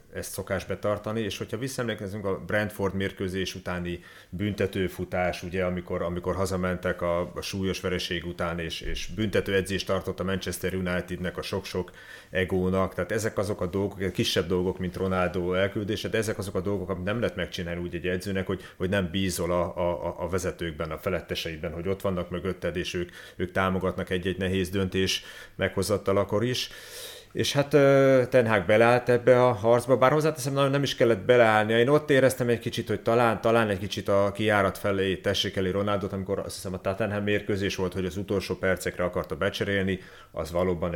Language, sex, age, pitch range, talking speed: Hungarian, male, 30-49, 90-105 Hz, 175 wpm